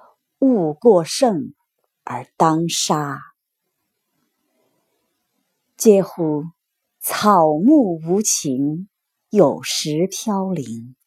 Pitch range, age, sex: 165-255 Hz, 50-69, female